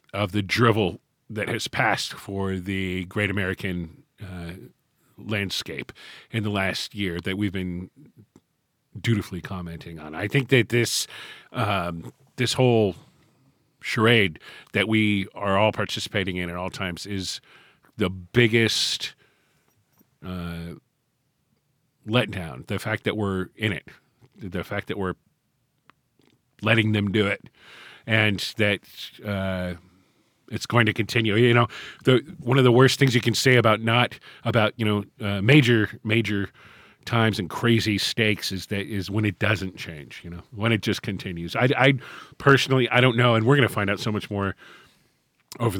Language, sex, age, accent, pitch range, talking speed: English, male, 40-59, American, 95-115 Hz, 155 wpm